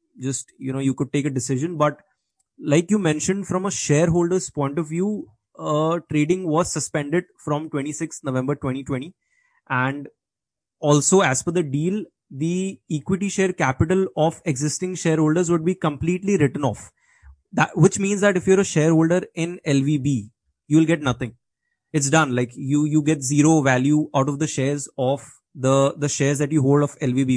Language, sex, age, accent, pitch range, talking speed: English, male, 20-39, Indian, 140-170 Hz, 170 wpm